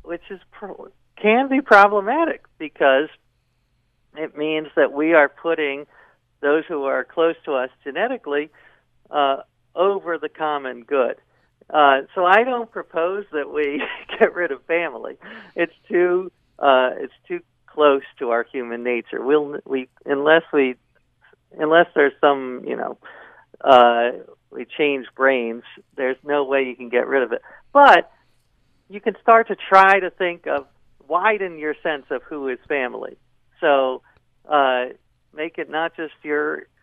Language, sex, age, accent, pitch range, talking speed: English, male, 50-69, American, 130-170 Hz, 145 wpm